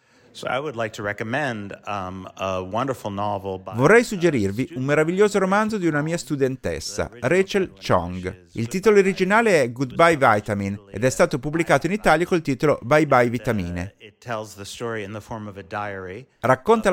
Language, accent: Italian, native